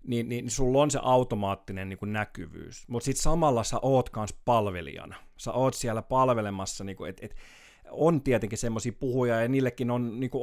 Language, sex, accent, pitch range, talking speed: Finnish, male, native, 105-125 Hz, 180 wpm